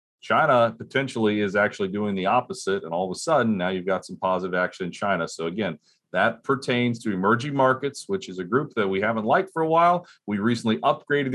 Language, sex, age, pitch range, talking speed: English, male, 40-59, 110-165 Hz, 215 wpm